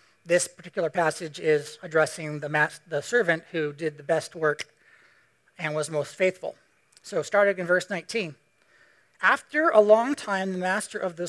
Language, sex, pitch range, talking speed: English, male, 155-215 Hz, 160 wpm